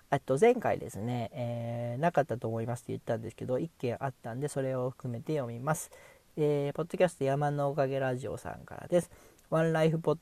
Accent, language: native, Japanese